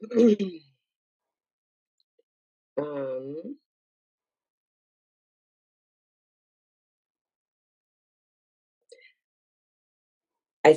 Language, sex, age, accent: English, female, 30-49, American